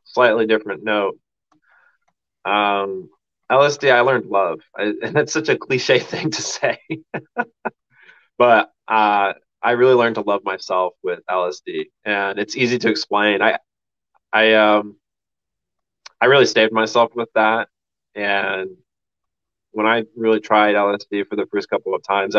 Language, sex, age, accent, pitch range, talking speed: English, male, 20-39, American, 100-115 Hz, 140 wpm